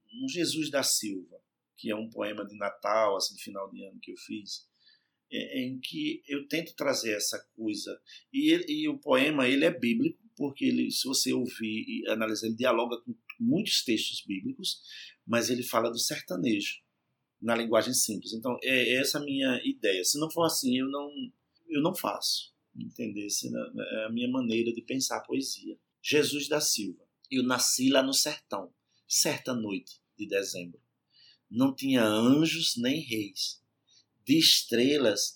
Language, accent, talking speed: Portuguese, Brazilian, 165 wpm